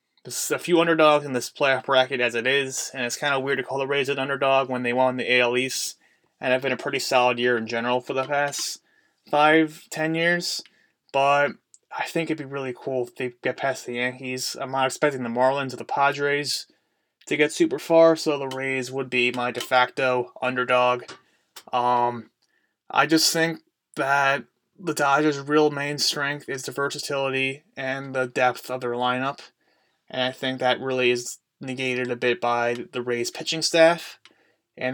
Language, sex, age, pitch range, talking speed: English, male, 20-39, 120-140 Hz, 190 wpm